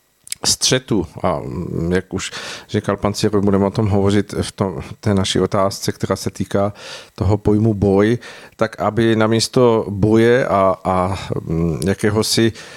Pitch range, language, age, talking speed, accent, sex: 100-110 Hz, Czech, 50-69, 130 wpm, native, male